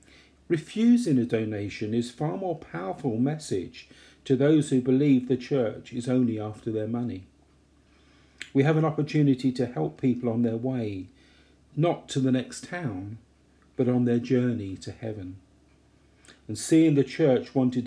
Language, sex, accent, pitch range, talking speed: English, male, British, 95-140 Hz, 150 wpm